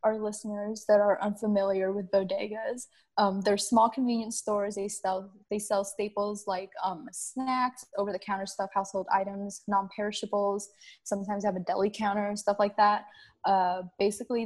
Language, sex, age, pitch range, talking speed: English, female, 10-29, 190-215 Hz, 150 wpm